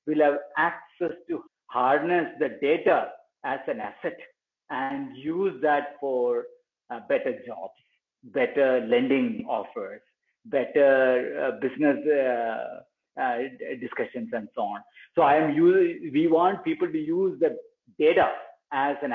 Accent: Indian